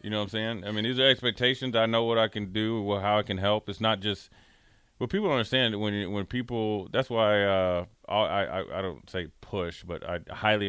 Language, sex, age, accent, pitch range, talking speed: English, male, 30-49, American, 85-110 Hz, 245 wpm